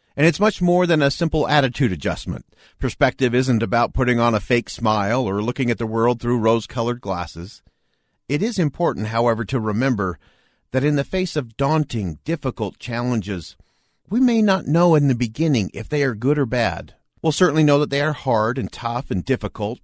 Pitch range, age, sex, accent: 110-150 Hz, 50-69, male, American